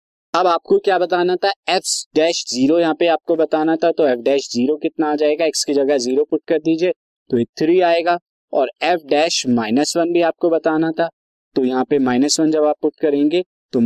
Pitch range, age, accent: 135-175 Hz, 20-39, native